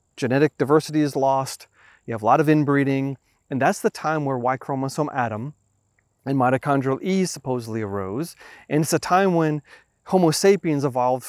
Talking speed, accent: 160 wpm, American